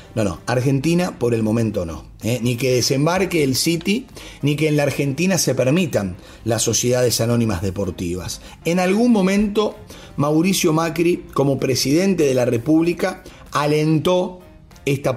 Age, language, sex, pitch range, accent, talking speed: 30-49, English, male, 115-160 Hz, Argentinian, 140 wpm